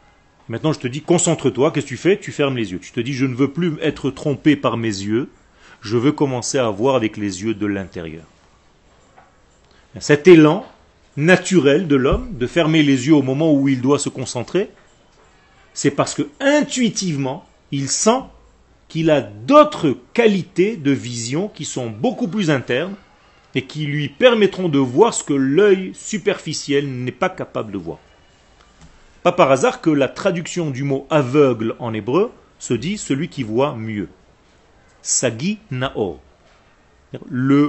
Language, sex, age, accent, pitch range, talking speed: French, male, 40-59, French, 130-175 Hz, 165 wpm